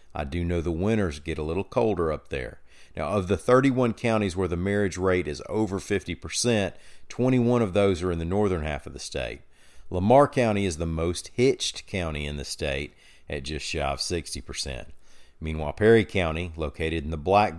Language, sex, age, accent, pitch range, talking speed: English, male, 40-59, American, 75-100 Hz, 190 wpm